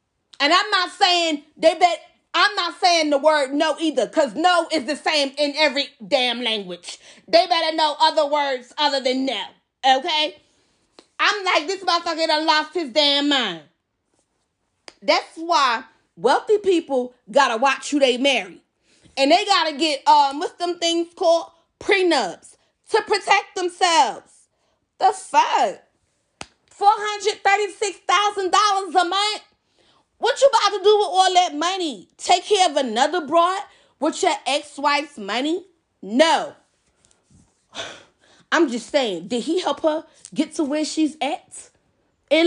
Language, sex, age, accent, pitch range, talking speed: English, female, 30-49, American, 295-380 Hz, 145 wpm